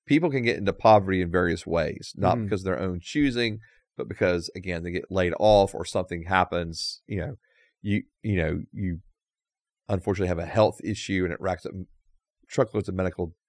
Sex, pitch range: male, 90-115 Hz